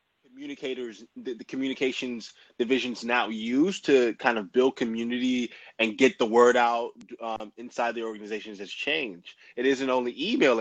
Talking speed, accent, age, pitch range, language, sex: 155 wpm, American, 20-39, 115-140 Hz, English, male